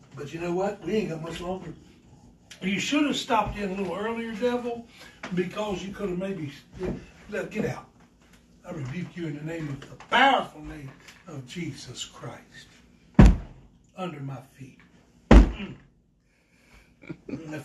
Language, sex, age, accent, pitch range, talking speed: English, male, 60-79, American, 210-330 Hz, 145 wpm